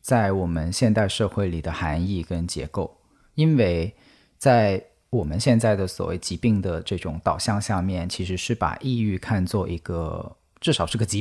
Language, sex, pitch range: Chinese, male, 95-125 Hz